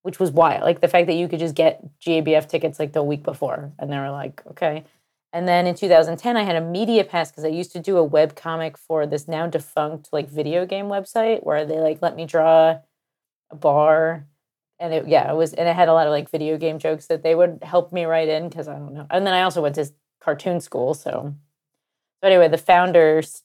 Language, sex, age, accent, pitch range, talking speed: English, female, 30-49, American, 155-175 Hz, 235 wpm